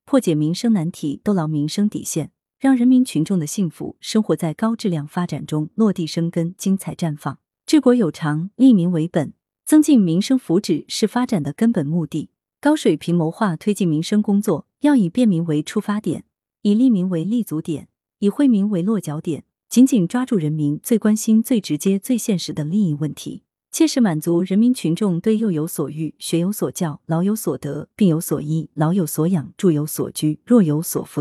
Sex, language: female, Chinese